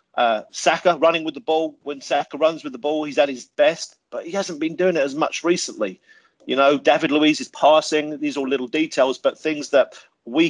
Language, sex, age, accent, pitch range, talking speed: English, male, 40-59, British, 140-165 Hz, 225 wpm